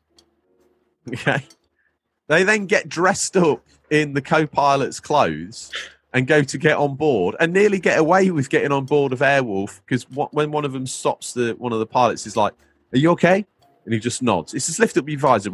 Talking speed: 200 wpm